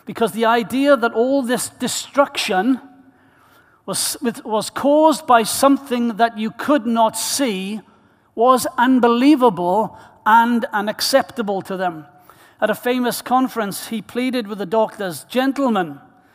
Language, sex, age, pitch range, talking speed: English, male, 60-79, 200-240 Hz, 120 wpm